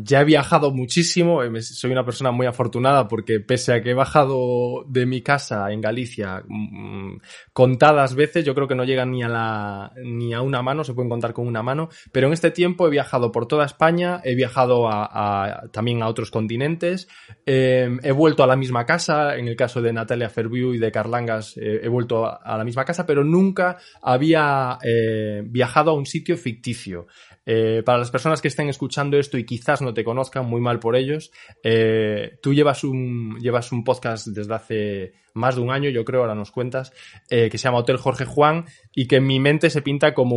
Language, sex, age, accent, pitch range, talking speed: Spanish, male, 20-39, Spanish, 115-140 Hz, 205 wpm